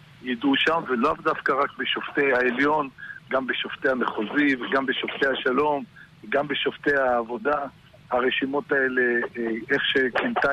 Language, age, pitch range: Hebrew, 50-69, 125-145 Hz